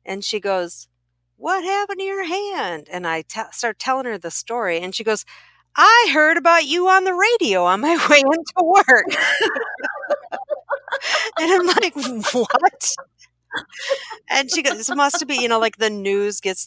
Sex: female